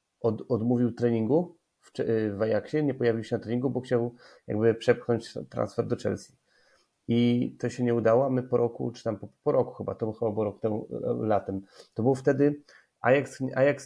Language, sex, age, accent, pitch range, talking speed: Polish, male, 30-49, native, 110-125 Hz, 180 wpm